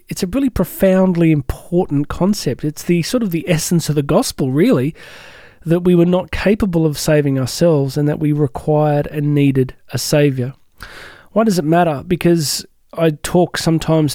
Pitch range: 150-185 Hz